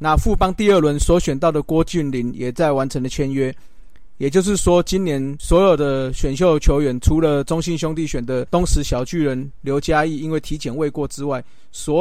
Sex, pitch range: male, 140-165 Hz